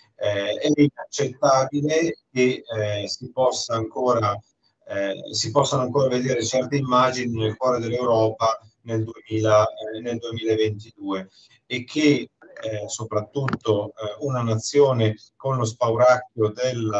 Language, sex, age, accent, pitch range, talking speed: Italian, male, 30-49, native, 105-125 Hz, 120 wpm